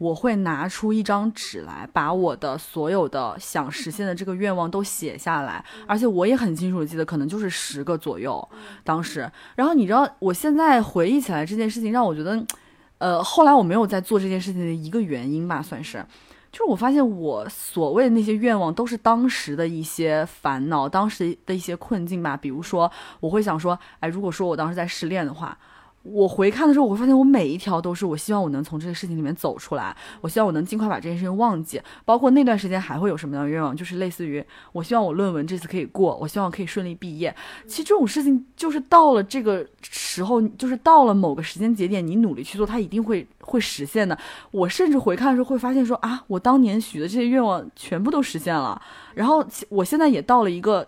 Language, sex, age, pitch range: Chinese, female, 20-39, 165-235 Hz